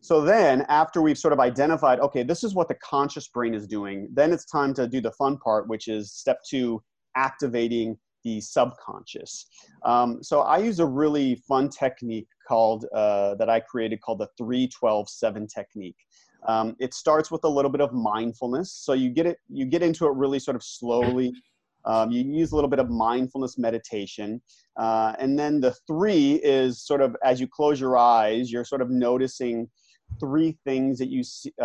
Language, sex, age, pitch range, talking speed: English, male, 30-49, 115-145 Hz, 195 wpm